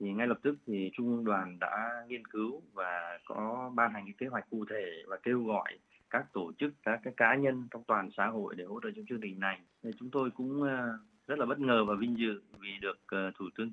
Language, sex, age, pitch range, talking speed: Vietnamese, male, 20-39, 100-125 Hz, 245 wpm